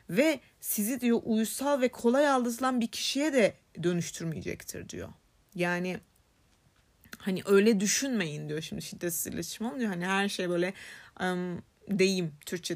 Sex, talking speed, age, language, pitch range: female, 125 wpm, 30-49, Turkish, 180-240 Hz